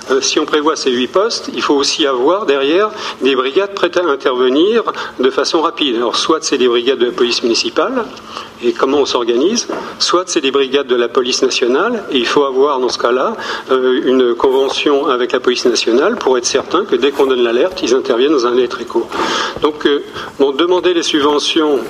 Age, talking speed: 40-59, 210 wpm